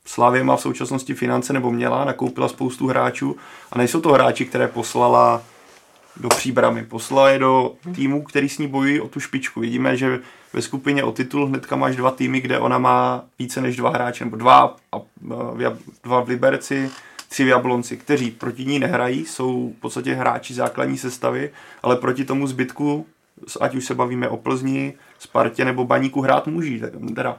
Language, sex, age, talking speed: Czech, male, 30-49, 175 wpm